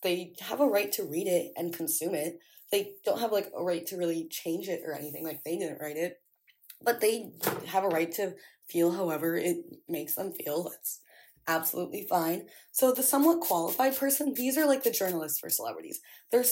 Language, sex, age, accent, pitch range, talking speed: English, female, 20-39, American, 170-255 Hz, 200 wpm